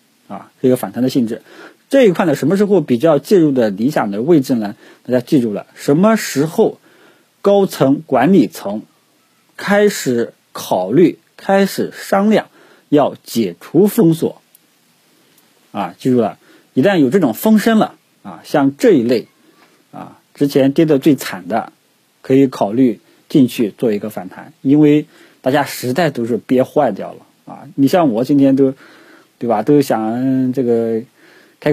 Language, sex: Chinese, male